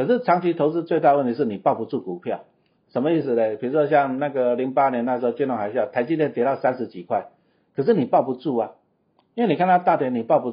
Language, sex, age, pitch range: Chinese, male, 50-69, 115-160 Hz